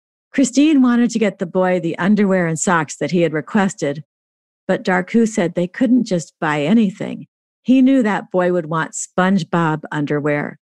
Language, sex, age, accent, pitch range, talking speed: English, female, 50-69, American, 170-225 Hz, 170 wpm